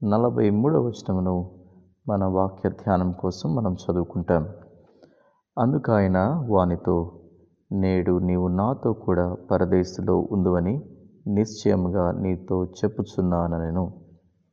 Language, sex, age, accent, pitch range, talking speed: English, male, 20-39, Indian, 90-100 Hz, 85 wpm